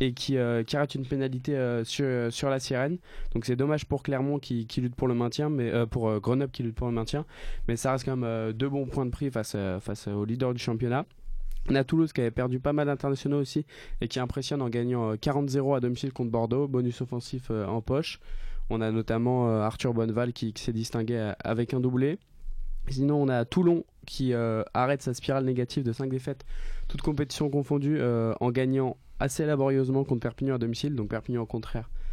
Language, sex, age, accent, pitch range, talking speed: French, male, 20-39, French, 115-140 Hz, 220 wpm